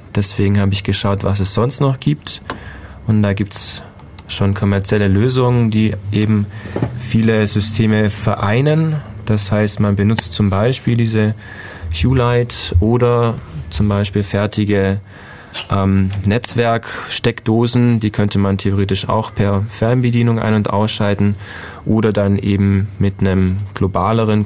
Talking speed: 125 wpm